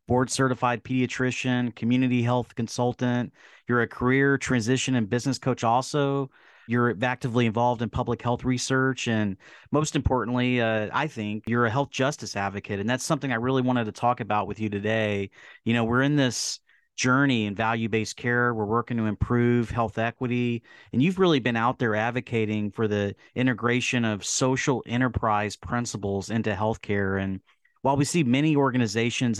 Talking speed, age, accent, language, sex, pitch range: 165 wpm, 30-49, American, English, male, 110-125 Hz